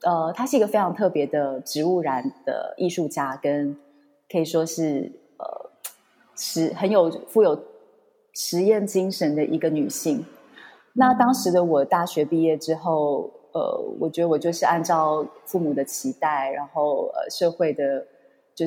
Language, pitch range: Chinese, 145-185 Hz